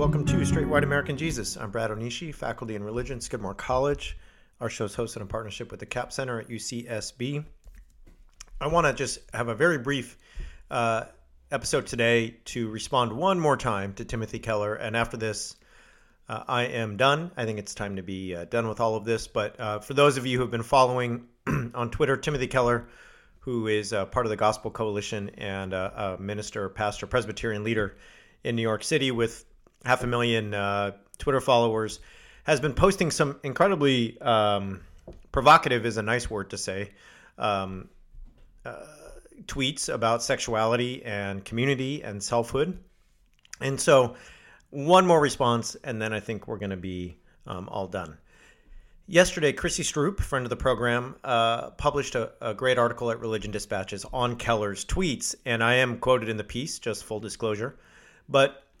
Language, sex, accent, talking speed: English, male, American, 175 wpm